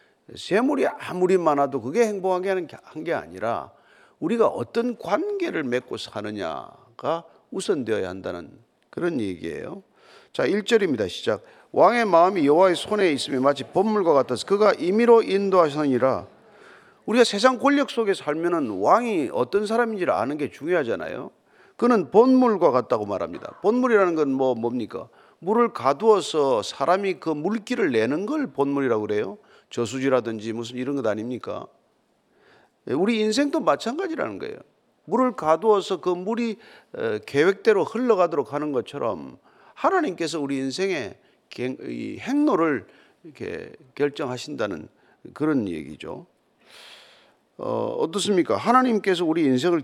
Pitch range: 140-240 Hz